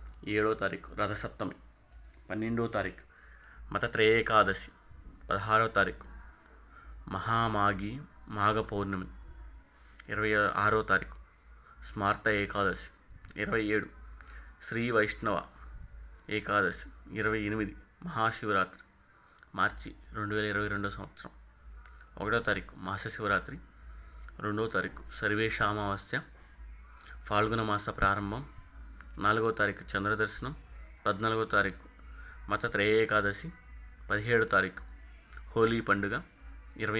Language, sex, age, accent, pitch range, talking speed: Telugu, male, 30-49, native, 65-105 Hz, 80 wpm